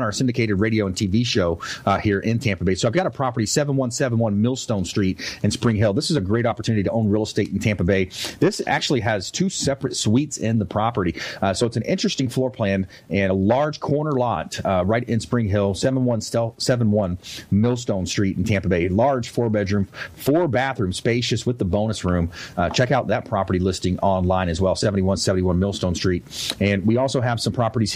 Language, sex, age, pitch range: English, male, 30-49, 100-125 Hz